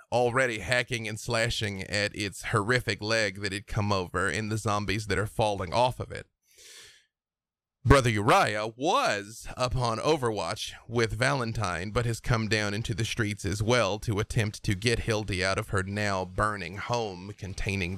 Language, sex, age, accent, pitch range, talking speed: English, male, 30-49, American, 100-120 Hz, 165 wpm